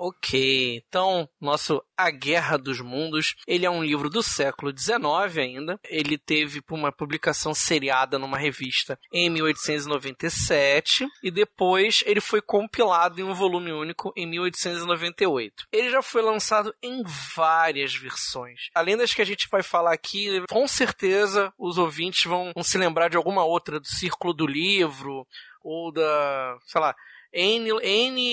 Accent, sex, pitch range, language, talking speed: Brazilian, male, 150-200 Hz, Portuguese, 150 wpm